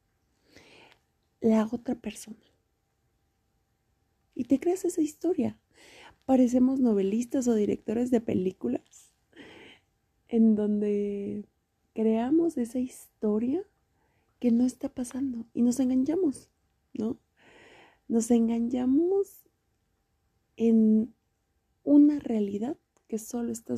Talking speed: 90 wpm